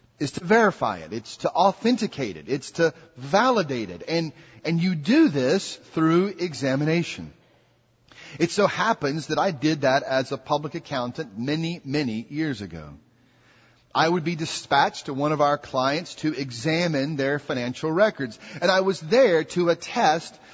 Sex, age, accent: male, 40-59, American